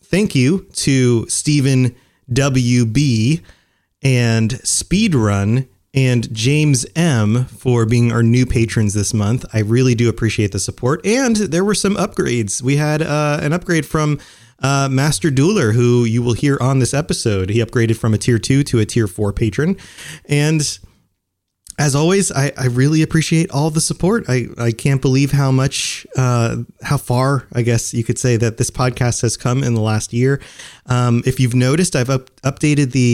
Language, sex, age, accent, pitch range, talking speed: English, male, 30-49, American, 115-150 Hz, 170 wpm